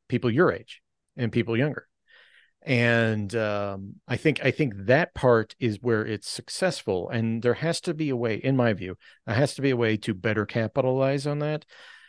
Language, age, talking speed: English, 40-59, 195 wpm